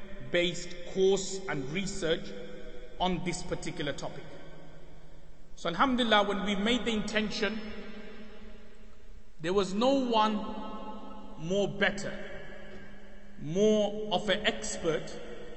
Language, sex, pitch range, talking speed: English, male, 165-195 Hz, 95 wpm